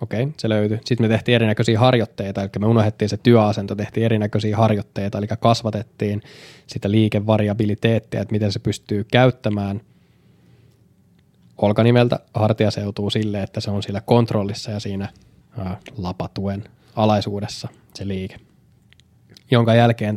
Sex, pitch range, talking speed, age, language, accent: male, 105-115 Hz, 130 wpm, 20-39, Finnish, native